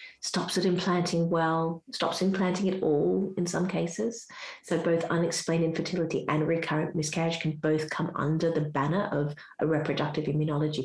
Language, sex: English, female